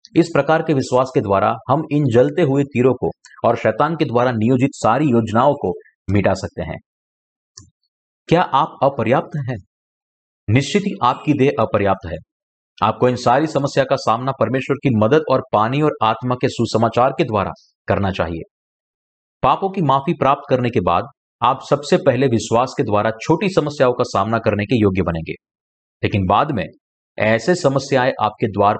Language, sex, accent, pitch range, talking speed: Hindi, male, native, 110-145 Hz, 165 wpm